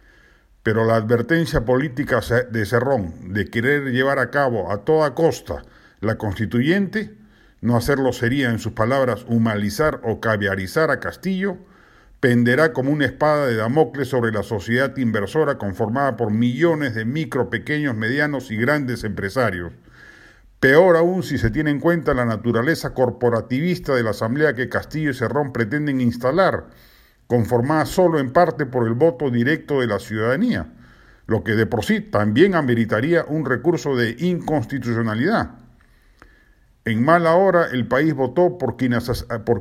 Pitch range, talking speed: 115-155 Hz, 145 wpm